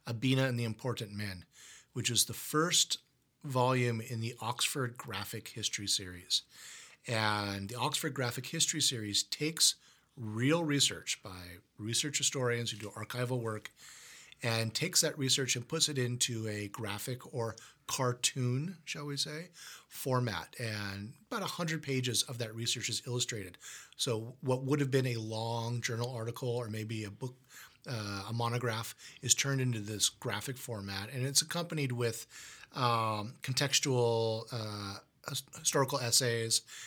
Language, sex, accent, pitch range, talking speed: English, male, American, 110-135 Hz, 145 wpm